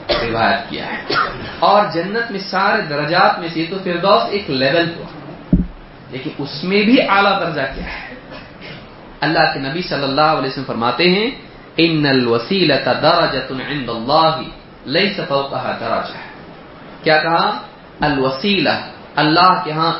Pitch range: 135-175 Hz